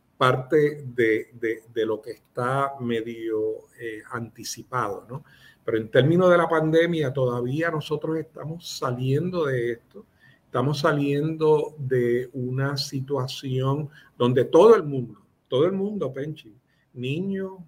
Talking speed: 120 wpm